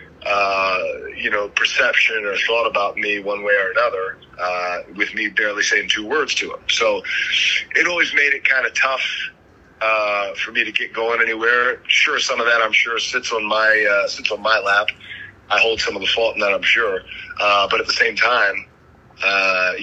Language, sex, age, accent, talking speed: English, male, 30-49, American, 205 wpm